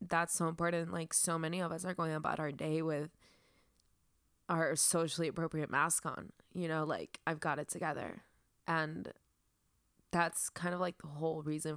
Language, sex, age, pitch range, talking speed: English, female, 20-39, 155-175 Hz, 175 wpm